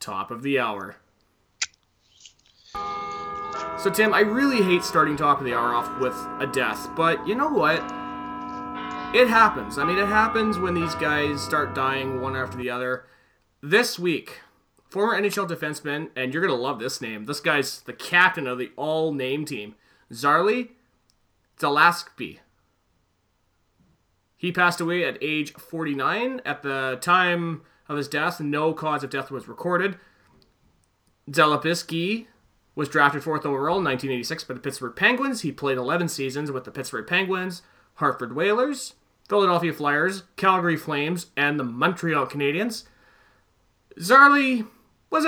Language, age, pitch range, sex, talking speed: English, 30-49, 135-190 Hz, male, 145 wpm